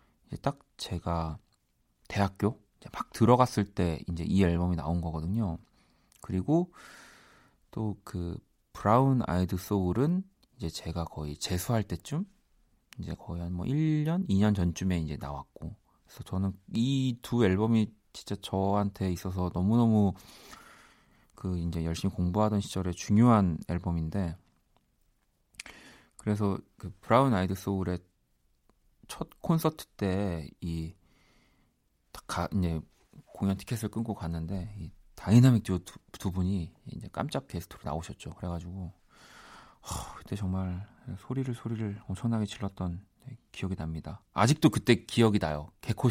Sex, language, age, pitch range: male, Korean, 40-59, 90-115 Hz